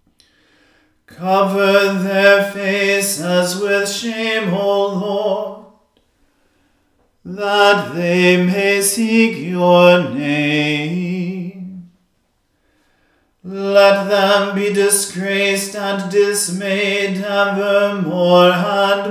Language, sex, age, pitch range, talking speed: English, male, 40-59, 180-200 Hz, 65 wpm